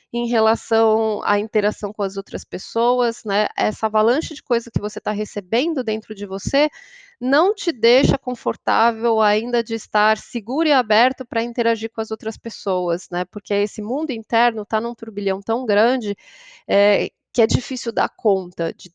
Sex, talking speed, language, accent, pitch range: female, 165 wpm, Portuguese, Brazilian, 190-235 Hz